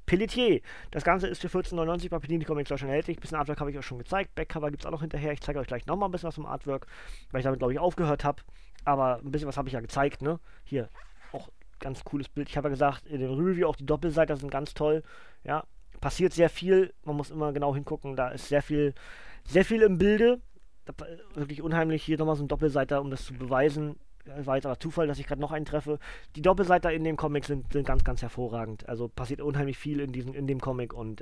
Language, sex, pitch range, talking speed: German, male, 140-170 Hz, 240 wpm